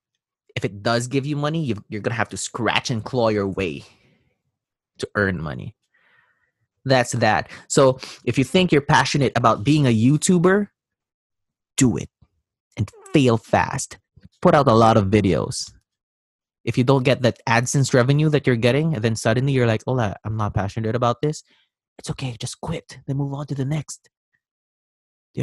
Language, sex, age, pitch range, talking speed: English, male, 20-39, 110-135 Hz, 175 wpm